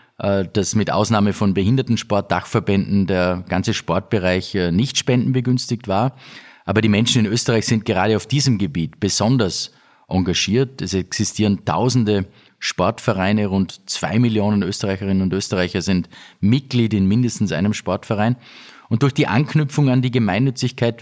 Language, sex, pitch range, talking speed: German, male, 100-120 Hz, 130 wpm